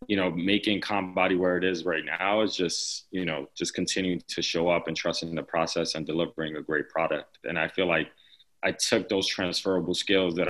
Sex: male